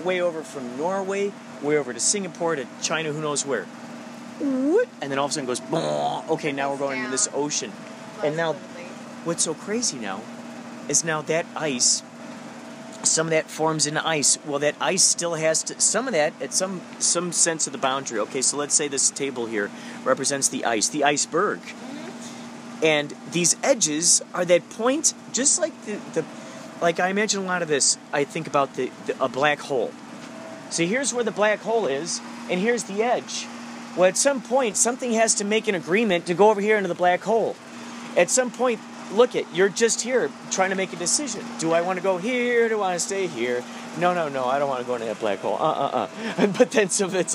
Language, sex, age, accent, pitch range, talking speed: English, male, 30-49, American, 155-230 Hz, 215 wpm